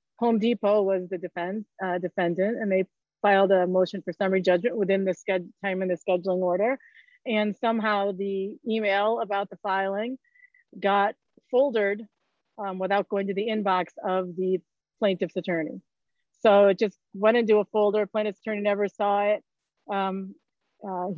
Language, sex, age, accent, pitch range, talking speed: English, female, 30-49, American, 190-220 Hz, 150 wpm